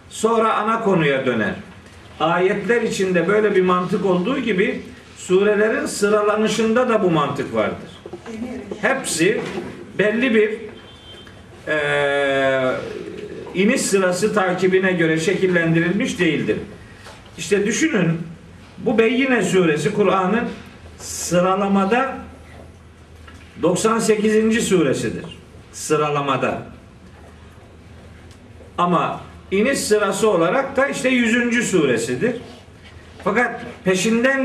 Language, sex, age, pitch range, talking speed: Turkish, male, 50-69, 160-230 Hz, 80 wpm